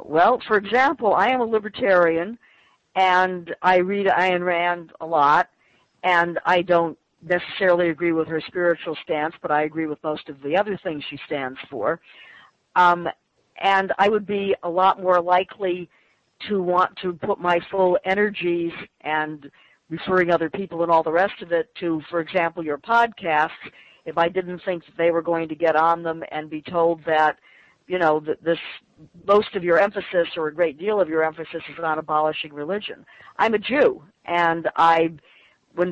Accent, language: American, English